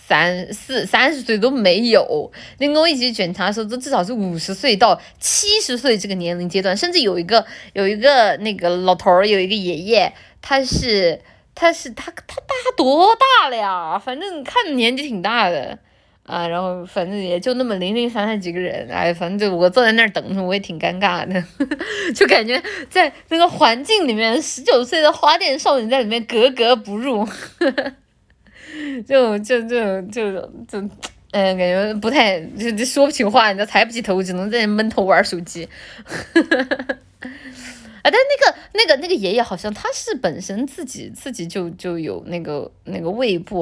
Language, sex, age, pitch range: Chinese, female, 20-39, 180-265 Hz